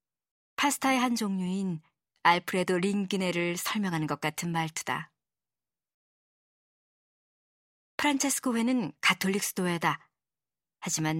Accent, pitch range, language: native, 155-205 Hz, Korean